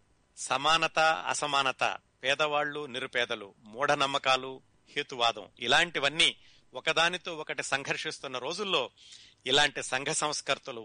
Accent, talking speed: native, 85 wpm